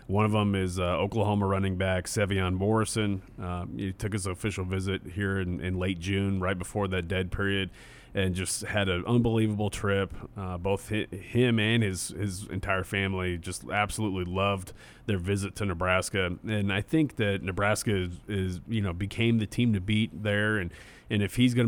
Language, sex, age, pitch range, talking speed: English, male, 30-49, 95-110 Hz, 190 wpm